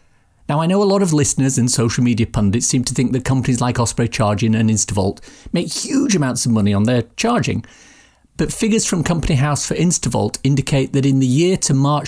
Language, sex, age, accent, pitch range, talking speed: English, male, 50-69, British, 115-145 Hz, 215 wpm